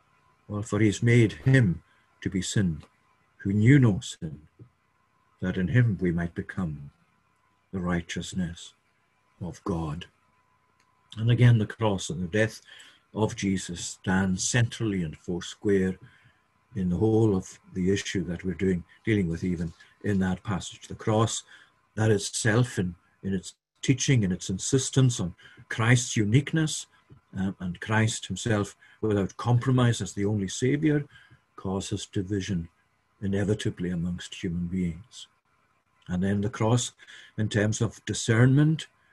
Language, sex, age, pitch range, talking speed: English, male, 60-79, 95-115 Hz, 135 wpm